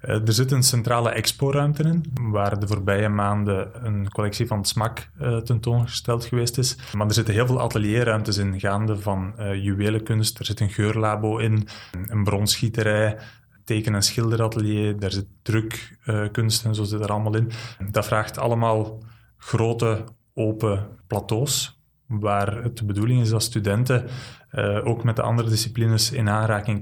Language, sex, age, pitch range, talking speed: Dutch, male, 20-39, 105-120 Hz, 155 wpm